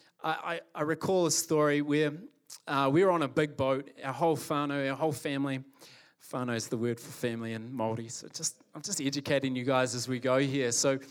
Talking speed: 210 wpm